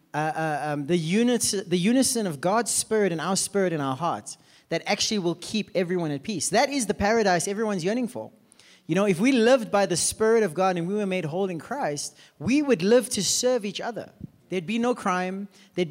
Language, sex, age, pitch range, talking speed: English, male, 30-49, 175-230 Hz, 225 wpm